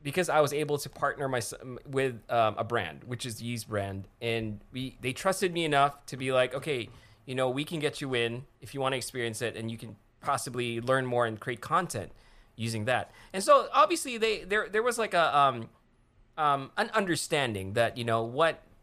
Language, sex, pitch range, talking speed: English, male, 115-155 Hz, 210 wpm